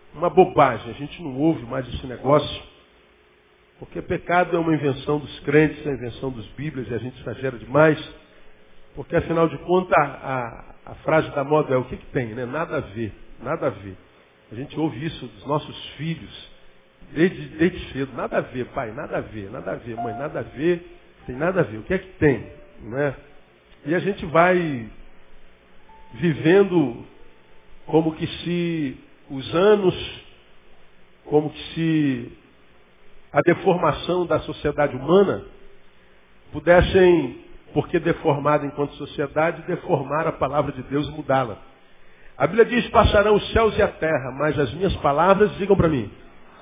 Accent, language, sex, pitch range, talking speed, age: Brazilian, Portuguese, male, 115-170 Hz, 165 wpm, 60-79